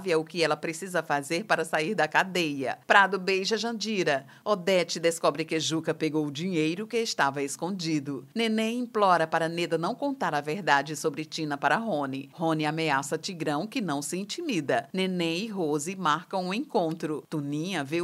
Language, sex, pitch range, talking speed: Portuguese, female, 160-215 Hz, 165 wpm